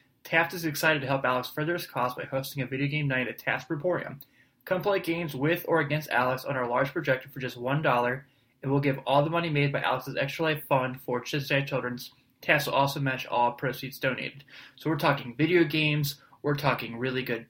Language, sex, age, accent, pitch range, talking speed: English, male, 20-39, American, 130-155 Hz, 220 wpm